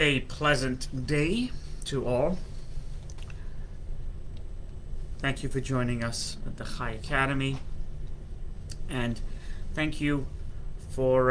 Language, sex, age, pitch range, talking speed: English, male, 30-49, 80-130 Hz, 95 wpm